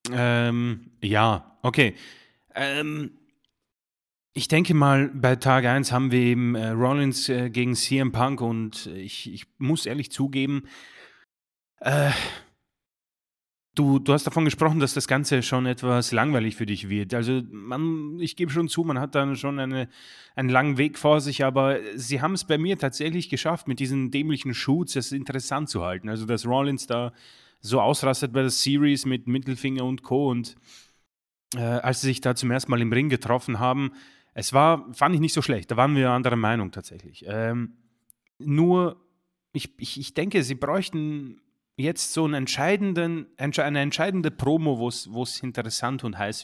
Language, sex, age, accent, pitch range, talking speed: German, male, 30-49, German, 120-150 Hz, 170 wpm